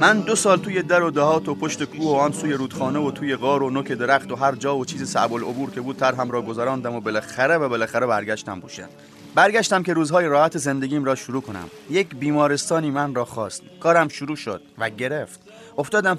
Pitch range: 120-160 Hz